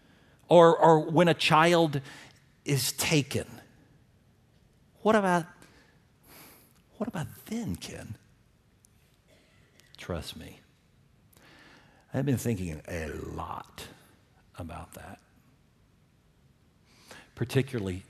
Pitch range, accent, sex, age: 95-155 Hz, American, male, 50-69